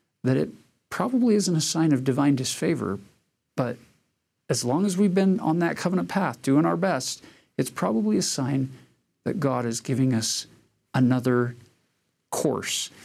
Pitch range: 120-155 Hz